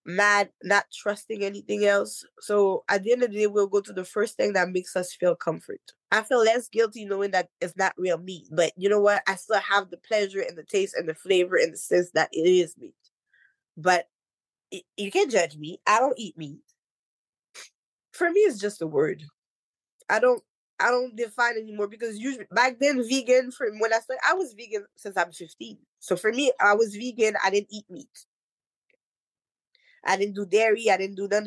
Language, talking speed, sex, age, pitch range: English, 210 wpm, female, 20-39, 190-245 Hz